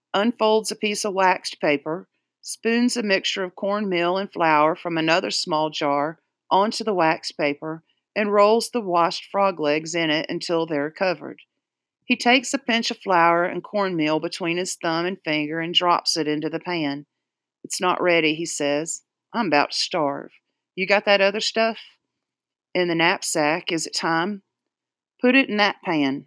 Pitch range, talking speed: 160-200 Hz, 175 wpm